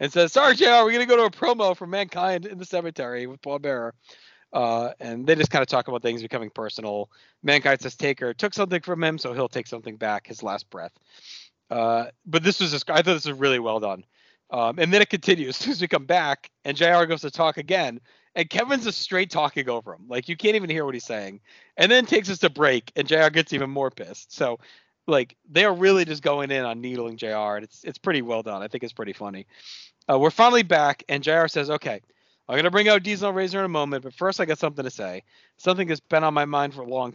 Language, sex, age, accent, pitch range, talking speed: English, male, 40-59, American, 125-185 Hz, 255 wpm